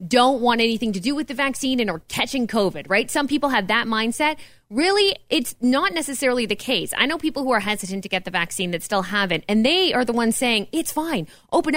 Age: 20-39